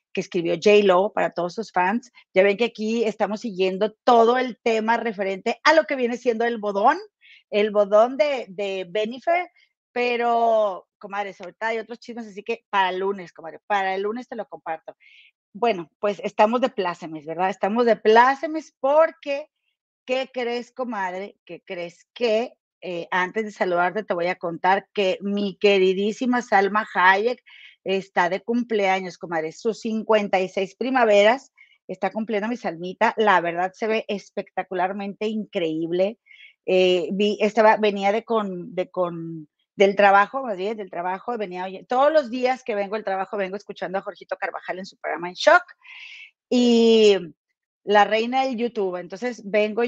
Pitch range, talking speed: 190-235 Hz, 160 wpm